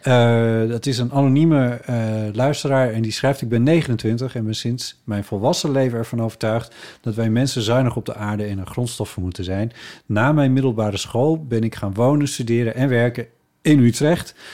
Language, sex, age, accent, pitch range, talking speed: Dutch, male, 40-59, Dutch, 110-140 Hz, 190 wpm